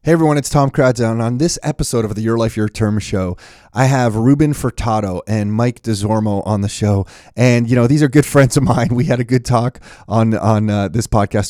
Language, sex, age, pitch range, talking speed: English, male, 30-49, 100-115 Hz, 235 wpm